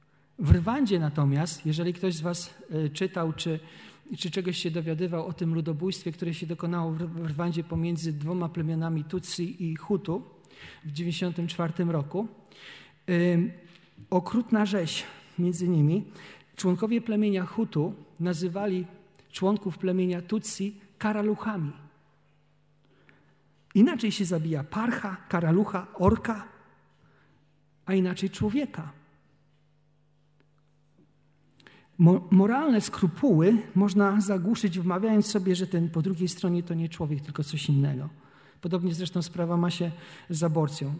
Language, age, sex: Polish, 40-59, male